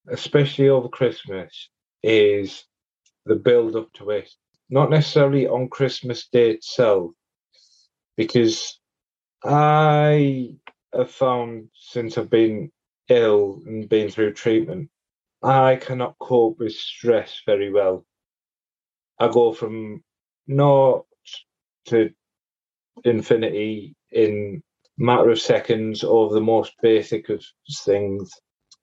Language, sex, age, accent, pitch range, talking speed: English, male, 30-49, British, 110-140 Hz, 105 wpm